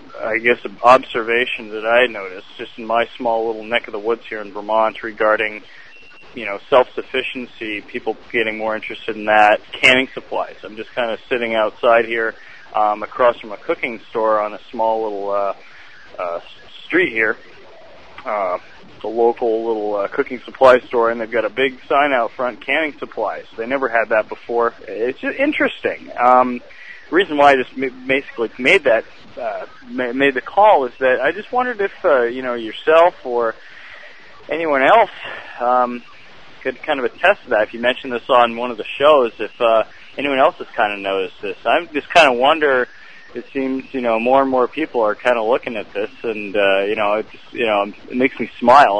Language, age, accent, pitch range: English, 30-49, American, 110-130 Hz